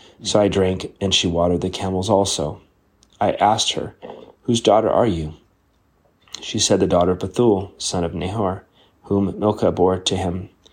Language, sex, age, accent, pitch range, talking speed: English, male, 30-49, American, 90-100 Hz, 170 wpm